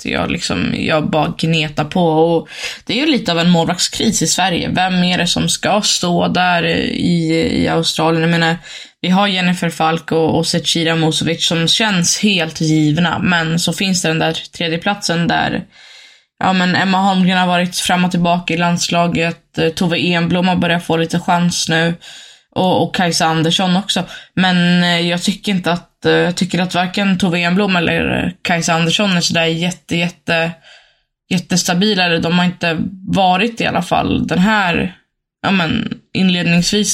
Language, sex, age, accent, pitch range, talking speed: Swedish, female, 20-39, native, 165-185 Hz, 165 wpm